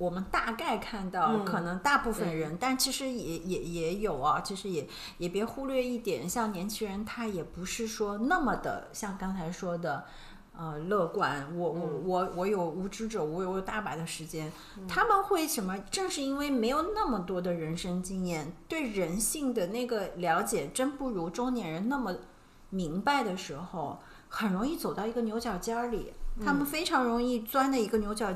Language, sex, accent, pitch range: Chinese, female, native, 180-255 Hz